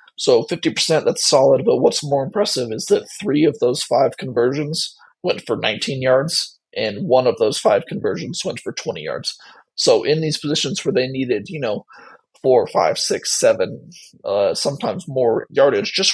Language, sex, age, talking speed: English, male, 30-49, 175 wpm